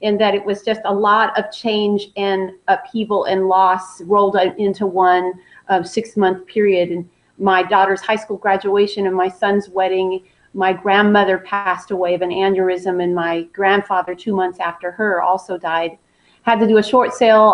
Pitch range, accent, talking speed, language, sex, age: 185-210 Hz, American, 180 wpm, English, female, 40-59